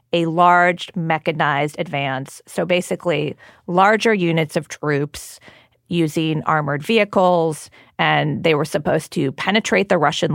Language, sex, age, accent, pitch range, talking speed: English, female, 40-59, American, 150-190 Hz, 120 wpm